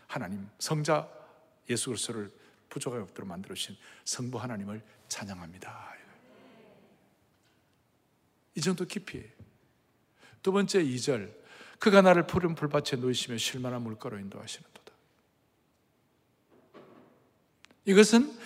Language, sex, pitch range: Korean, male, 135-205 Hz